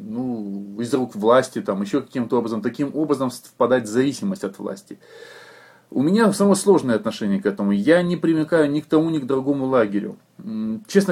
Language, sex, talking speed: Russian, male, 175 wpm